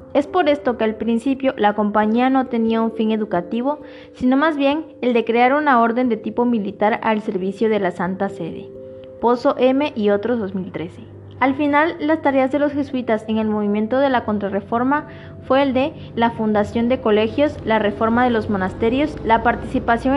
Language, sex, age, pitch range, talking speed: Spanish, female, 20-39, 215-270 Hz, 185 wpm